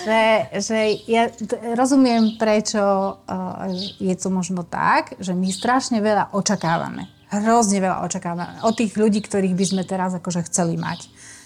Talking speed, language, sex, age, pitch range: 140 wpm, Slovak, female, 30-49, 175-210 Hz